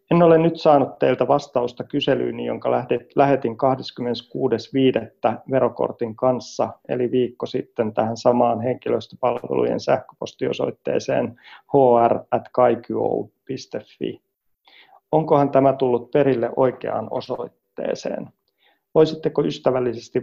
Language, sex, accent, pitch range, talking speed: Finnish, male, native, 120-140 Hz, 85 wpm